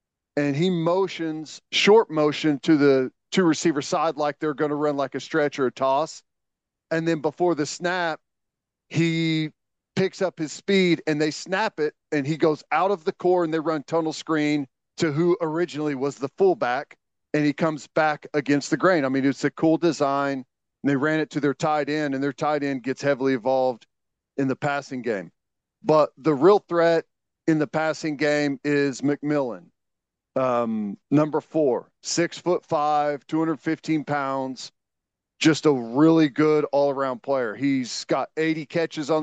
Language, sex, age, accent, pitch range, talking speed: English, male, 40-59, American, 140-160 Hz, 175 wpm